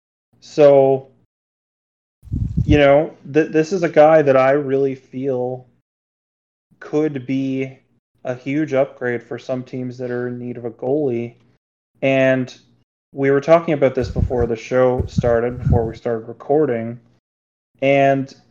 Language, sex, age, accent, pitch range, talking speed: English, male, 20-39, American, 120-140 Hz, 135 wpm